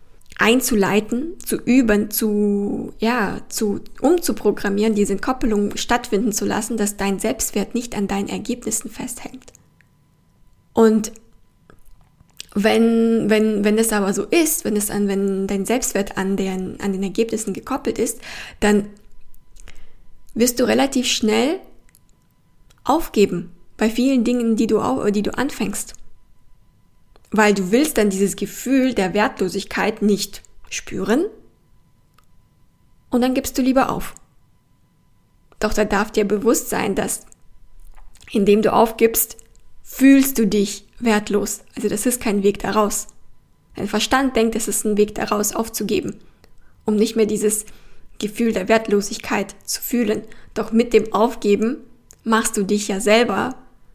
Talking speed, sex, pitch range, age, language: 130 wpm, female, 205-235 Hz, 20-39, German